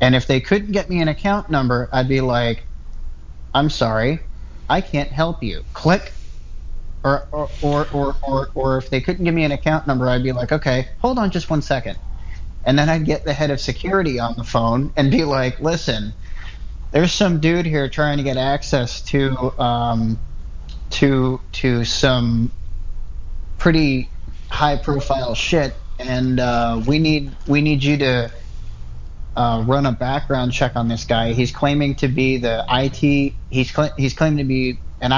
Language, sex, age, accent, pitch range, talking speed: English, male, 30-49, American, 115-145 Hz, 175 wpm